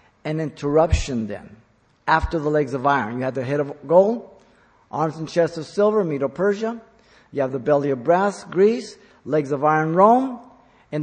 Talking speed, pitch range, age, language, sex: 175 wpm, 140-185 Hz, 50-69, English, male